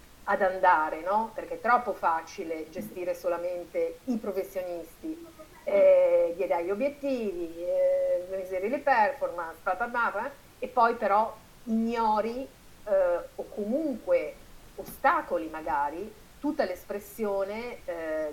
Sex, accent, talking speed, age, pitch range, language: female, native, 100 wpm, 40-59, 175-240 Hz, Italian